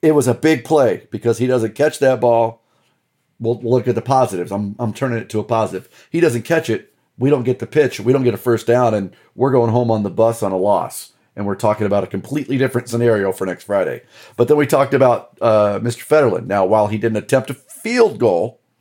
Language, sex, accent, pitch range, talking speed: English, male, American, 115-145 Hz, 240 wpm